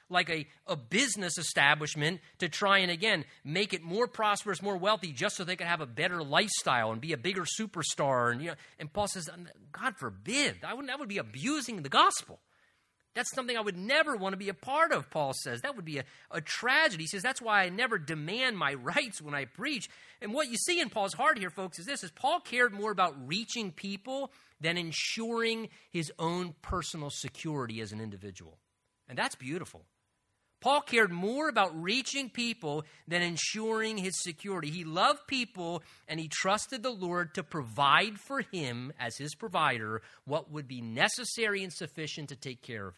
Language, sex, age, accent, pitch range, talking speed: English, male, 30-49, American, 150-220 Hz, 195 wpm